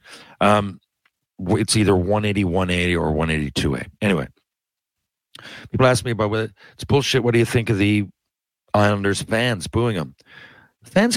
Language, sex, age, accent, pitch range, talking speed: English, male, 50-69, American, 95-120 Hz, 140 wpm